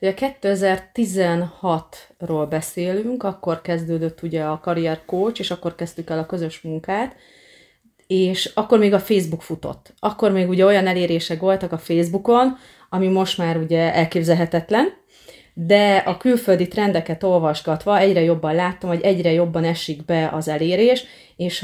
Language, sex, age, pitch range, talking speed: Hungarian, female, 30-49, 165-195 Hz, 140 wpm